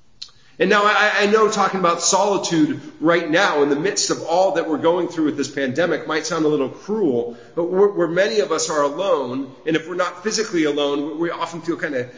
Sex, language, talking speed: male, English, 220 wpm